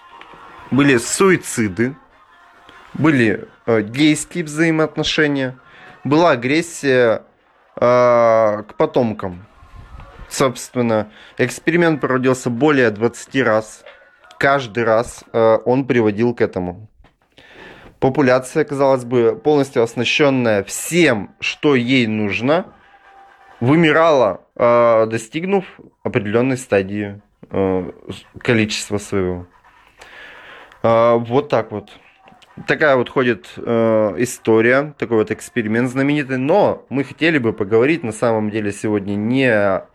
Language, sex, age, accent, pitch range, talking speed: Russian, male, 20-39, native, 105-135 Hz, 95 wpm